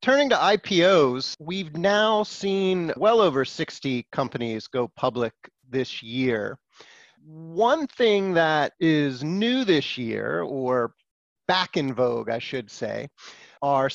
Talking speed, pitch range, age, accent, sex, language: 125 wpm, 135-195 Hz, 30-49, American, male, English